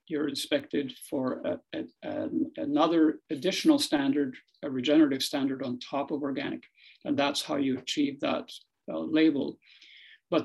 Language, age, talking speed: English, 50-69, 145 wpm